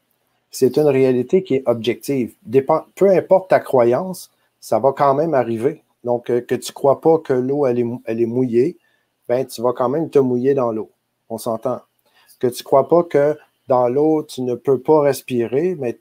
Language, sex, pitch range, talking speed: French, male, 115-135 Hz, 200 wpm